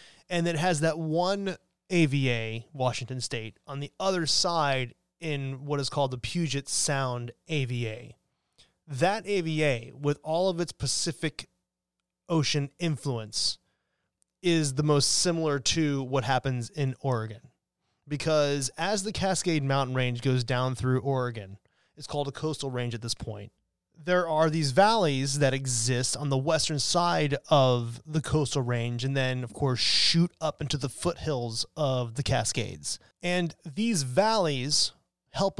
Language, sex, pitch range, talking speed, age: English, male, 125-165 Hz, 145 wpm, 30-49